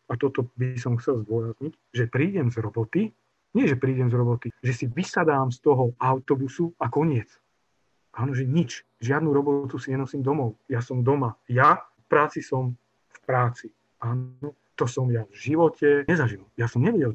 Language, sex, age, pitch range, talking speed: Slovak, male, 40-59, 120-145 Hz, 175 wpm